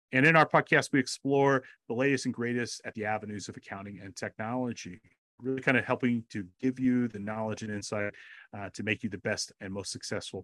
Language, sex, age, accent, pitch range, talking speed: English, male, 30-49, American, 100-135 Hz, 215 wpm